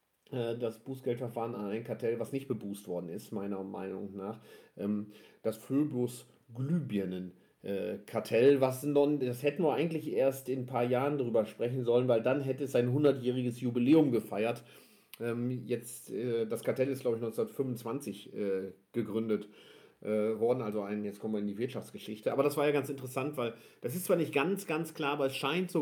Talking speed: 170 wpm